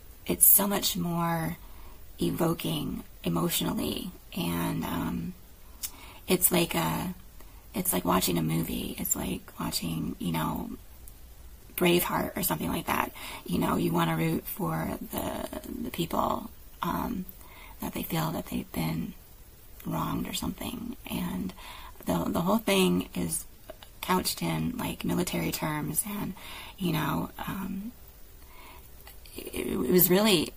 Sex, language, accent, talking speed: female, English, American, 125 wpm